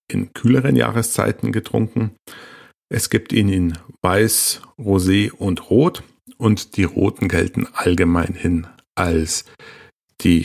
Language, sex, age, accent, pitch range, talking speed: German, male, 50-69, German, 90-120 Hz, 115 wpm